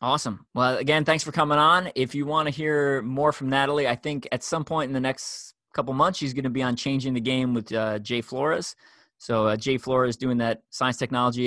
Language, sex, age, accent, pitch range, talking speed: English, male, 20-39, American, 115-135 Hz, 235 wpm